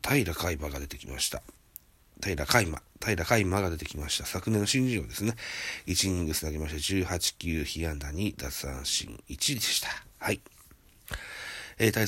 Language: Japanese